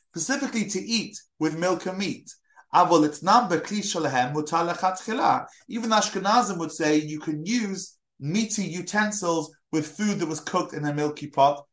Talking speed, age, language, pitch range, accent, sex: 130 wpm, 30-49, English, 155-210 Hz, British, male